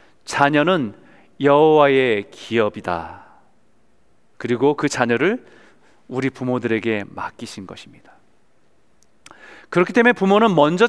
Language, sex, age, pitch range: Korean, male, 40-59, 140-200 Hz